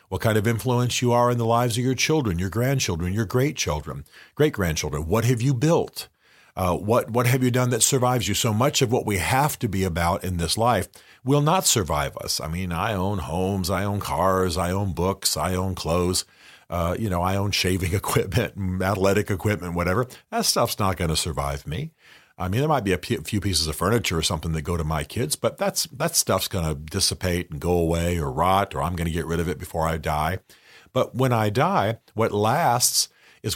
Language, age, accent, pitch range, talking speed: English, 50-69, American, 85-120 Hz, 225 wpm